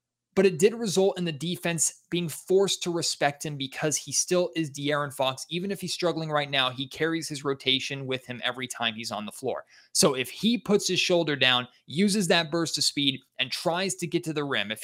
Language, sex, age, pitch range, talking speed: English, male, 20-39, 140-175 Hz, 225 wpm